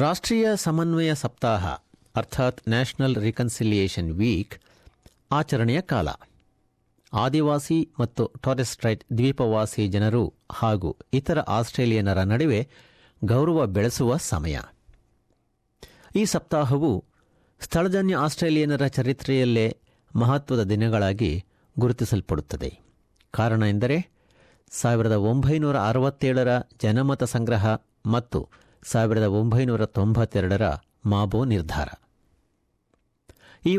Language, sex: Kannada, male